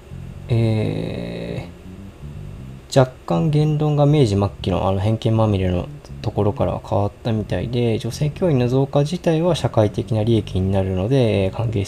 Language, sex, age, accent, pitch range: Japanese, male, 20-39, native, 95-125 Hz